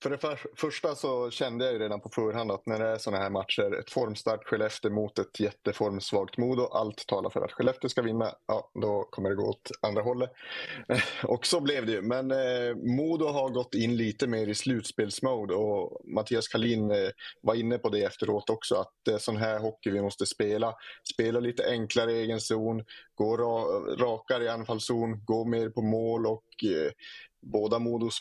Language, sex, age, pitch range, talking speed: English, male, 30-49, 105-120 Hz, 195 wpm